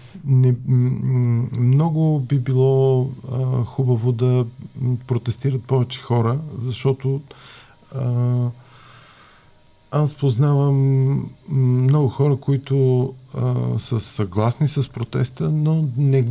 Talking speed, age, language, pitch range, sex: 90 wpm, 50-69, Bulgarian, 120-135 Hz, male